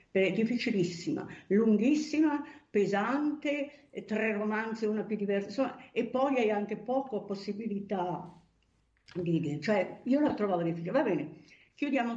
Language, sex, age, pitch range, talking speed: Italian, female, 50-69, 170-250 Hz, 125 wpm